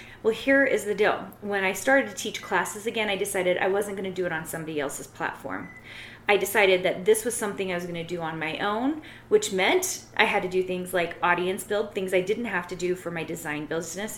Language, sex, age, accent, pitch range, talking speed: English, female, 30-49, American, 170-205 Hz, 245 wpm